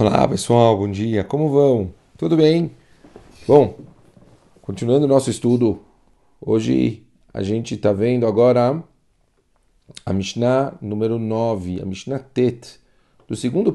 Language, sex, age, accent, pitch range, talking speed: Portuguese, male, 40-59, Brazilian, 110-140 Hz, 120 wpm